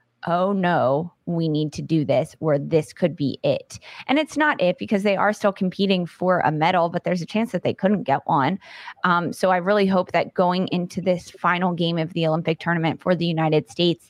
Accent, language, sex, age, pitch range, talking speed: American, English, female, 20-39, 155-180 Hz, 220 wpm